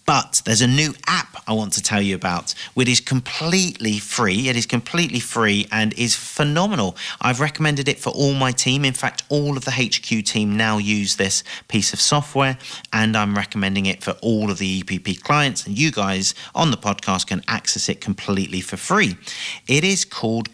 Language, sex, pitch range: English, male, 100-135 Hz